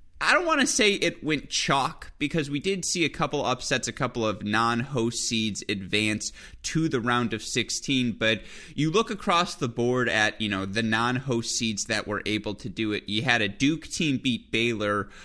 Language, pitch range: English, 100-125 Hz